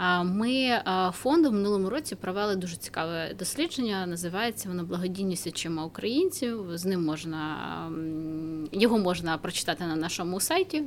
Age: 20-39